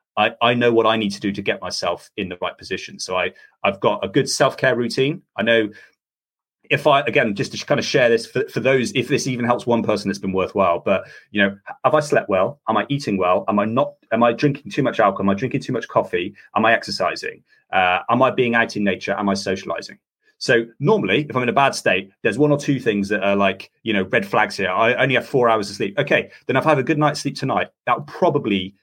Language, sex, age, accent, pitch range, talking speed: English, male, 30-49, British, 100-130 Hz, 265 wpm